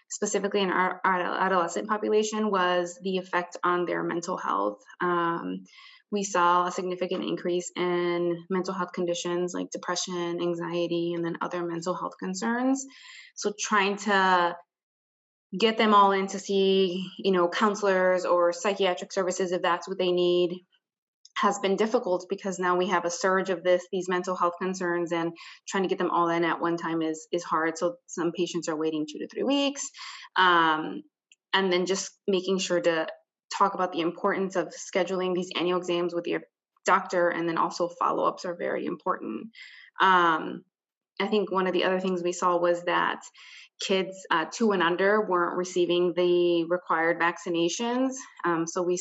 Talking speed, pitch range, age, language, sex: 170 wpm, 175-195 Hz, 20-39, English, female